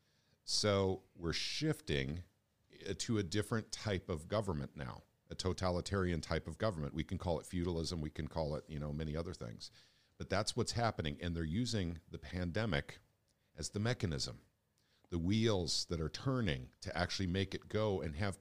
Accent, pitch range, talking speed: American, 85-110 Hz, 175 wpm